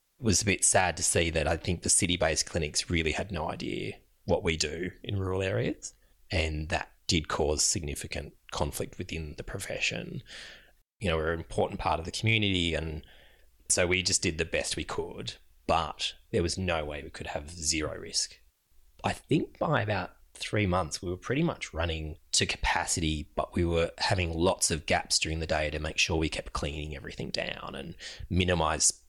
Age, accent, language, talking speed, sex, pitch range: 20-39, Australian, English, 190 wpm, male, 80-95 Hz